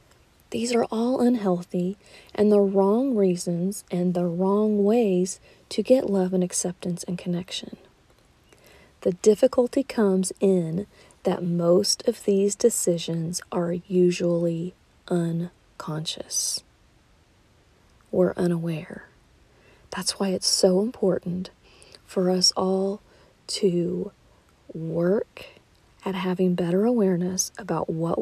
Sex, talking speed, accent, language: female, 105 wpm, American, English